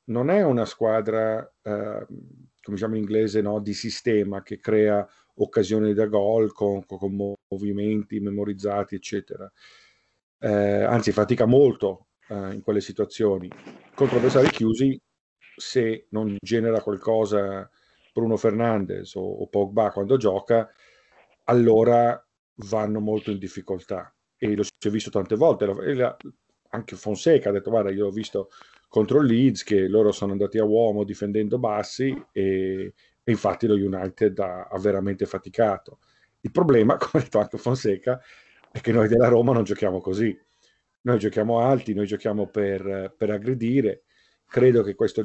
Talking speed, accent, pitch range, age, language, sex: 145 wpm, native, 100-115 Hz, 40-59, Italian, male